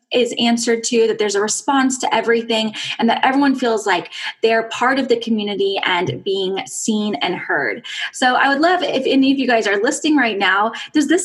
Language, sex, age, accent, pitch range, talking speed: English, female, 10-29, American, 220-295 Hz, 210 wpm